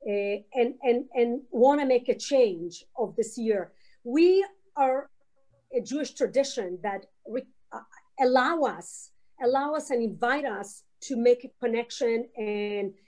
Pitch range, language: 225-285 Hz, Hebrew